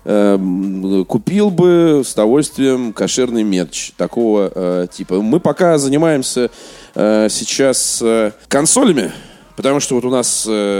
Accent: native